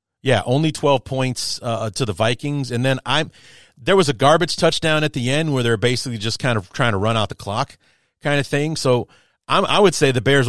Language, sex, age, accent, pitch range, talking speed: English, male, 30-49, American, 110-140 Hz, 235 wpm